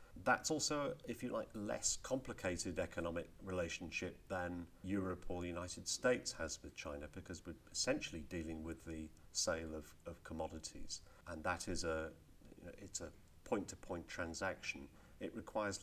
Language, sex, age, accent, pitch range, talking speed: English, male, 50-69, British, 80-95 Hz, 150 wpm